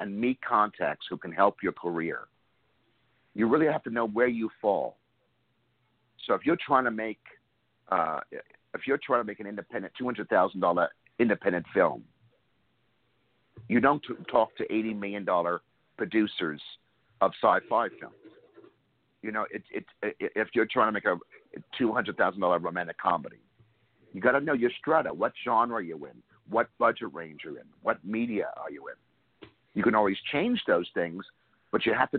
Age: 50-69